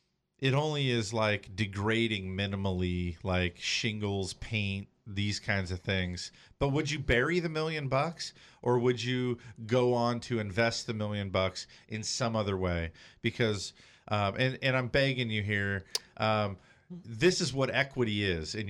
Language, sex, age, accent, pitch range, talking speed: English, male, 40-59, American, 100-125 Hz, 155 wpm